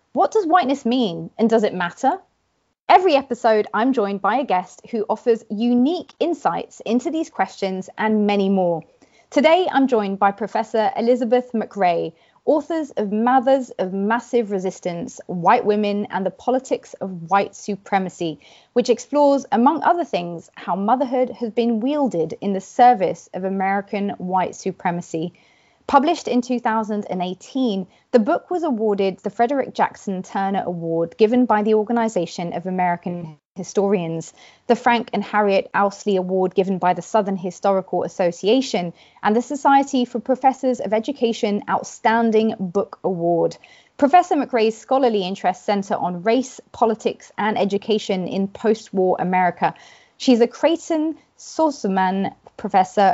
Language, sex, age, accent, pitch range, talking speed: English, female, 30-49, British, 190-245 Hz, 140 wpm